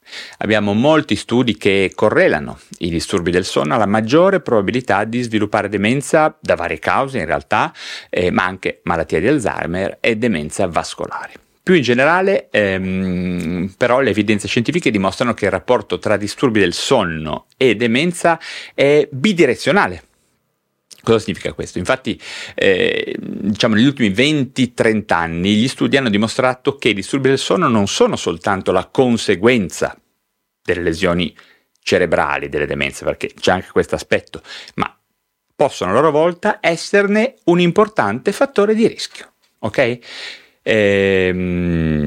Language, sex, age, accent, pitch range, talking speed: Italian, male, 40-59, native, 95-160 Hz, 135 wpm